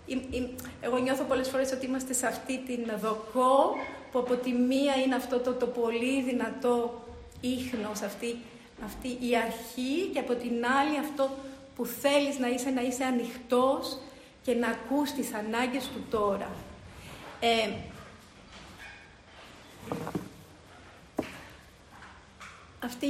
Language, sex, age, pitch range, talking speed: English, female, 40-59, 230-265 Hz, 115 wpm